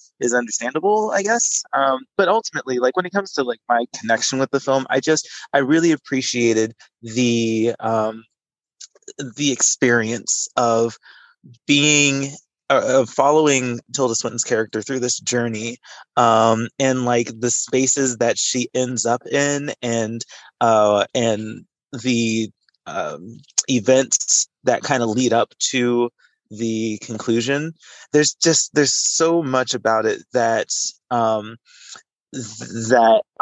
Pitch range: 115-140 Hz